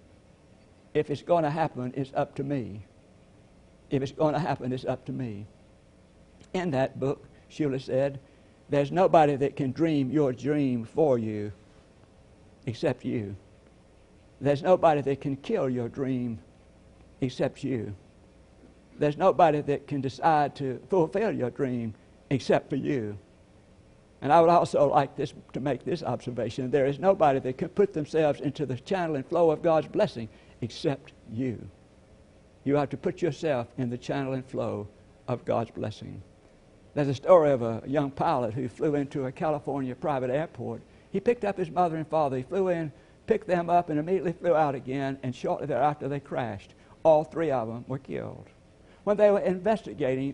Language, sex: English, male